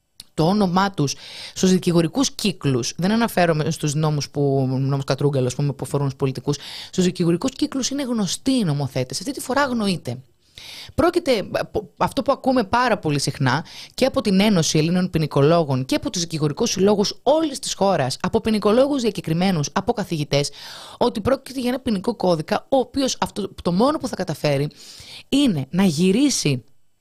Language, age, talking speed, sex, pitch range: Greek, 30-49, 150 wpm, female, 150-225 Hz